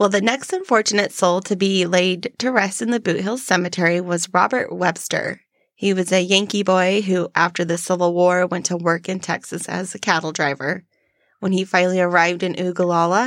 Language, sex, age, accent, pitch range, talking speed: English, female, 20-39, American, 175-210 Hz, 195 wpm